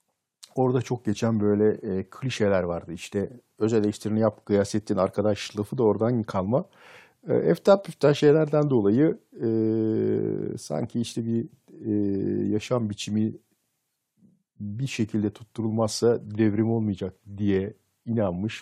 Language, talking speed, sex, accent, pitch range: Turkish, 105 wpm, male, native, 105-130 Hz